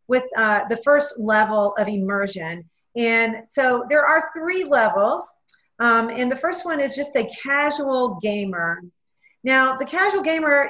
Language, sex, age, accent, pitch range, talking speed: English, female, 40-59, American, 210-290 Hz, 150 wpm